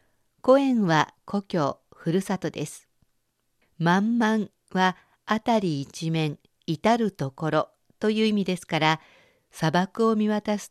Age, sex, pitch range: 50-69, female, 160-210 Hz